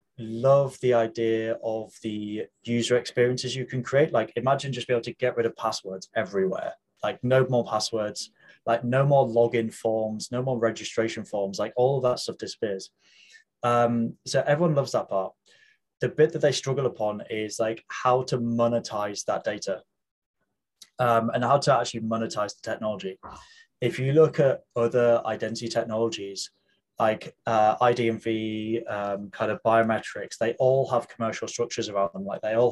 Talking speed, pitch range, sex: 165 wpm, 110-125 Hz, male